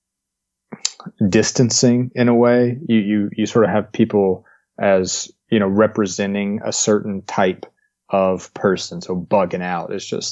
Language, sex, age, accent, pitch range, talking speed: English, male, 30-49, American, 95-105 Hz, 145 wpm